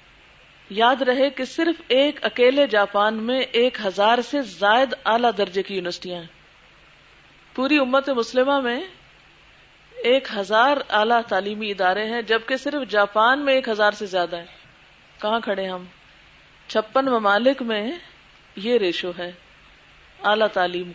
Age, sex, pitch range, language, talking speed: 50-69, female, 200-265 Hz, Urdu, 135 wpm